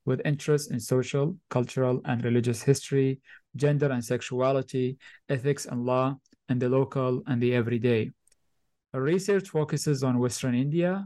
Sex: male